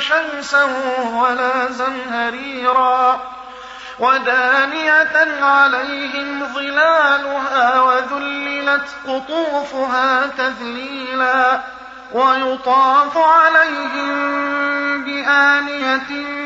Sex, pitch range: male, 250-285 Hz